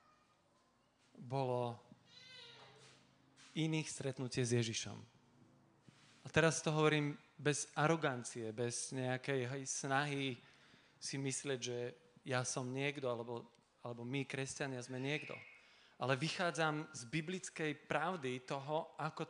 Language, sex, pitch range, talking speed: Slovak, male, 135-170 Hz, 105 wpm